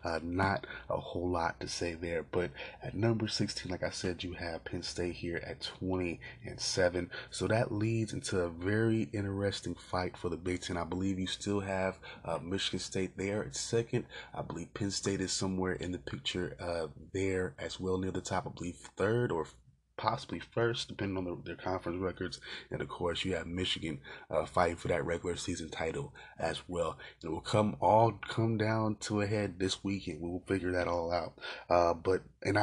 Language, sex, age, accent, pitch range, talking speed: English, male, 20-39, American, 90-105 Hz, 205 wpm